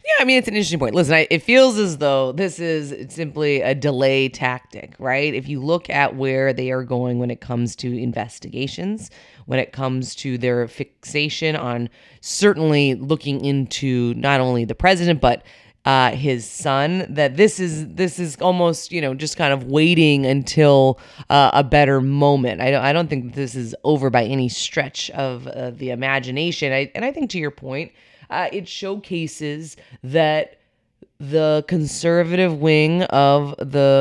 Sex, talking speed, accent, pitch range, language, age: female, 175 wpm, American, 135-170 Hz, English, 30-49